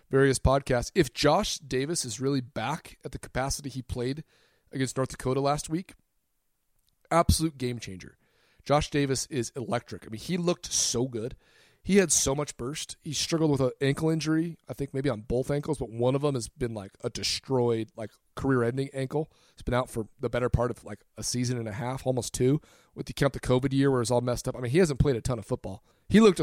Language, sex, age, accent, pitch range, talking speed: English, male, 30-49, American, 125-150 Hz, 220 wpm